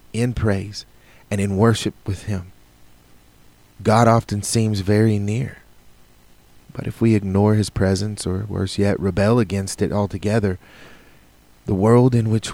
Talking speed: 140 wpm